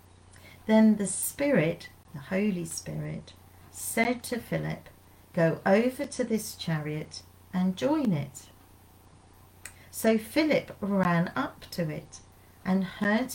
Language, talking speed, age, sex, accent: English, 110 wpm, 40-59, female, British